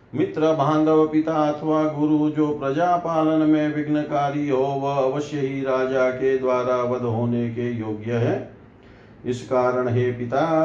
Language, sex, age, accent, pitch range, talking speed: Hindi, male, 50-69, native, 120-140 Hz, 145 wpm